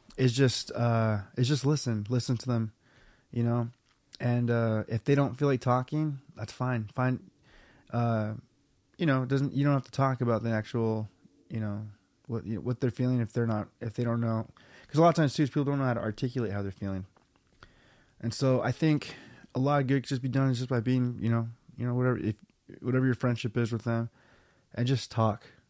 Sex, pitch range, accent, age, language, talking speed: male, 110-125 Hz, American, 20-39, English, 220 wpm